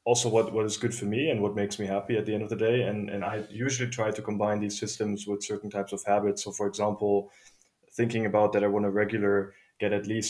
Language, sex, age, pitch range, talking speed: English, male, 20-39, 100-110 Hz, 260 wpm